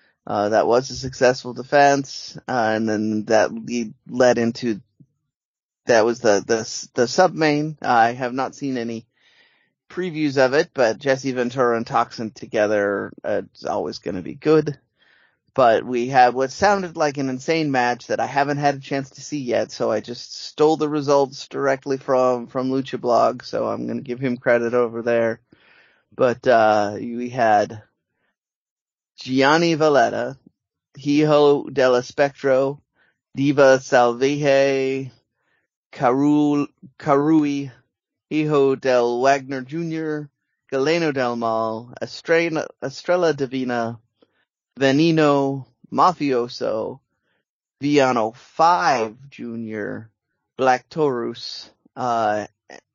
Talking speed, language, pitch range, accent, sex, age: 125 wpm, English, 120-145 Hz, American, male, 30-49